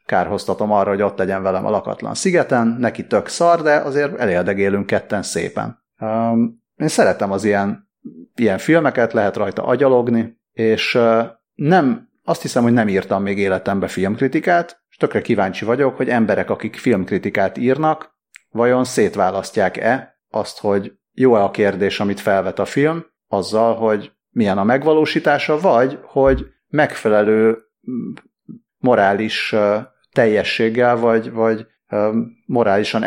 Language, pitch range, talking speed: Hungarian, 105-135 Hz, 125 wpm